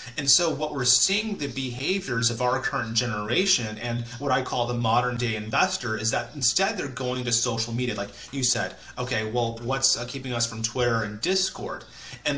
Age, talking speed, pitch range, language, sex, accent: 30-49, 195 wpm, 115-145 Hz, English, male, American